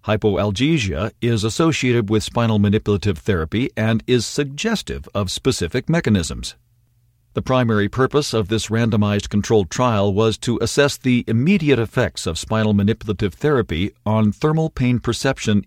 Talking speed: 135 wpm